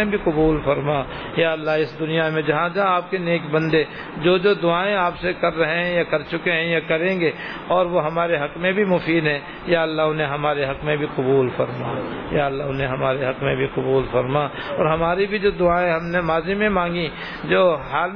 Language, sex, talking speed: Urdu, male, 215 wpm